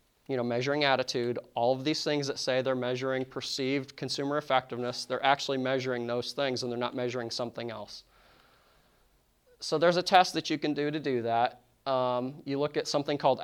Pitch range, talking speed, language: 130-150 Hz, 190 wpm, English